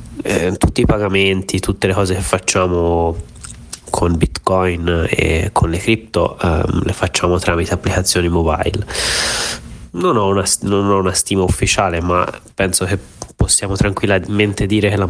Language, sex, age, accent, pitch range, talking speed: Italian, male, 30-49, native, 90-100 Hz, 130 wpm